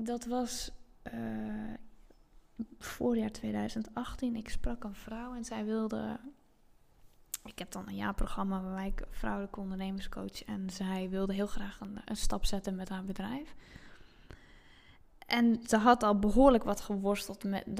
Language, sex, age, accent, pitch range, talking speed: Dutch, female, 10-29, Dutch, 195-230 Hz, 140 wpm